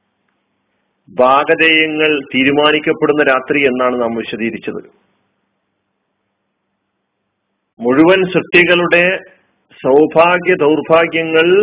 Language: Malayalam